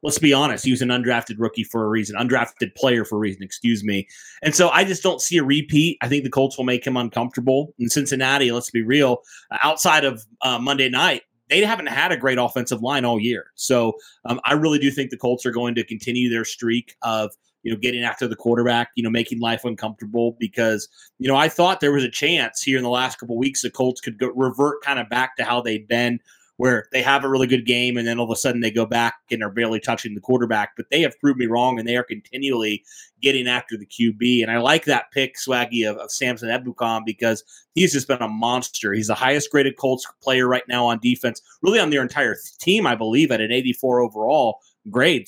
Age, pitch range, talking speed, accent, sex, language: 30-49, 115-135 Hz, 240 wpm, American, male, English